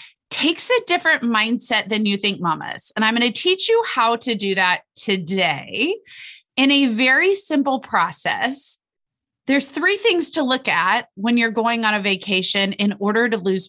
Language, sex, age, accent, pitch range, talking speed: English, female, 30-49, American, 190-295 Hz, 175 wpm